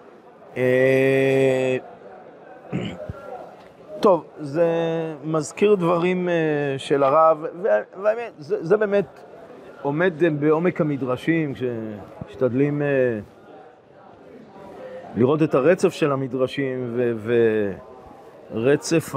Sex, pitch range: male, 130-175 Hz